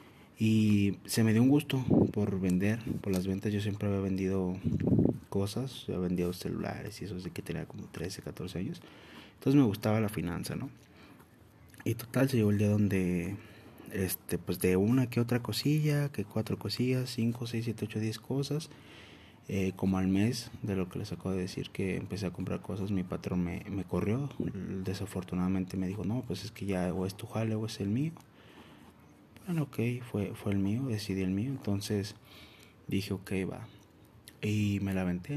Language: Spanish